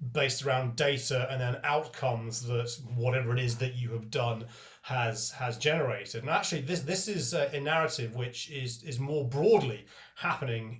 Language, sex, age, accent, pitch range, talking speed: English, male, 30-49, British, 120-145 Hz, 165 wpm